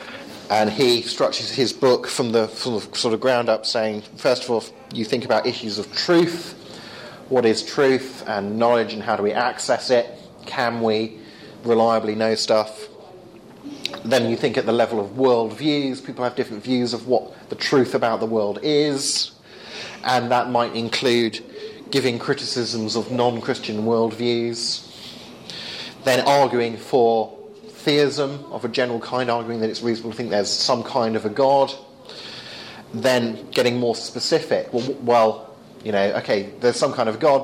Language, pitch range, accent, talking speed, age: English, 110-130 Hz, British, 160 wpm, 30-49